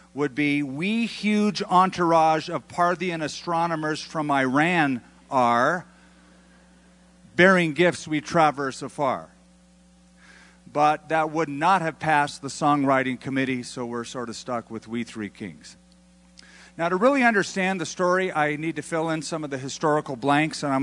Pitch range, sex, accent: 125-175 Hz, male, American